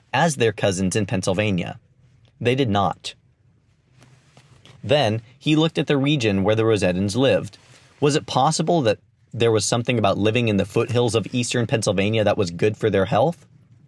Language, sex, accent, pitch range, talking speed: English, male, American, 105-135 Hz, 170 wpm